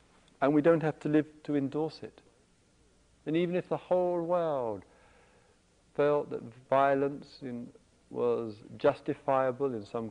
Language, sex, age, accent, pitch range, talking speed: English, male, 50-69, British, 100-150 Hz, 135 wpm